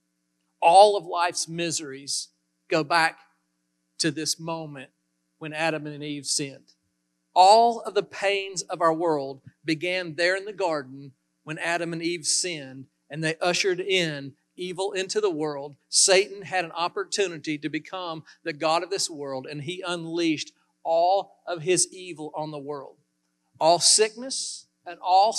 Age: 40-59